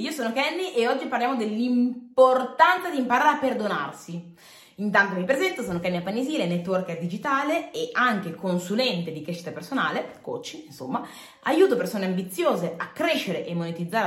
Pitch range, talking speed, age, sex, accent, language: 170-250 Hz, 145 wpm, 30-49, female, native, Italian